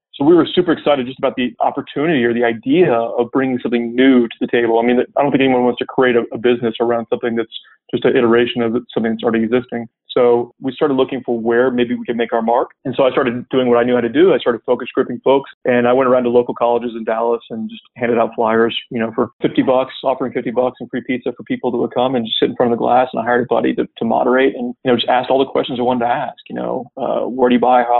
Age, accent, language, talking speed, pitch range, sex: 30-49, American, English, 290 wpm, 120-130 Hz, male